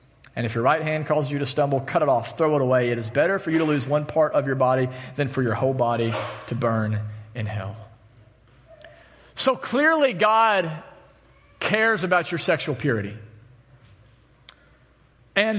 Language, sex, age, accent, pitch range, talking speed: English, male, 40-59, American, 130-185 Hz, 175 wpm